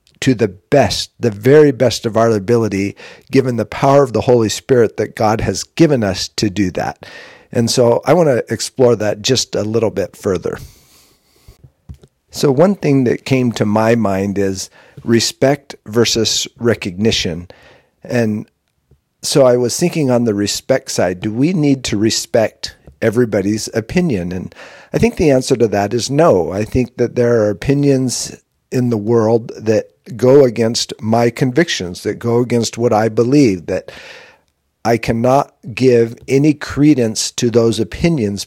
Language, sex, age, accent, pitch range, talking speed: English, male, 50-69, American, 105-130 Hz, 160 wpm